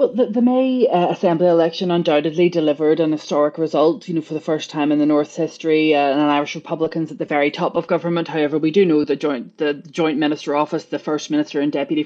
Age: 20-39